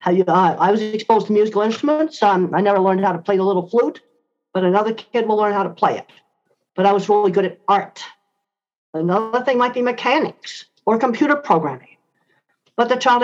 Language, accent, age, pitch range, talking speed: English, American, 50-69, 185-245 Hz, 200 wpm